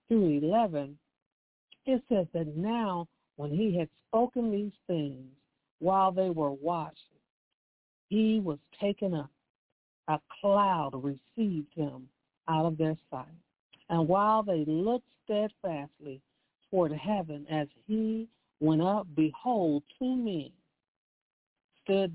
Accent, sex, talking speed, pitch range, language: American, female, 115 wpm, 155-210 Hz, English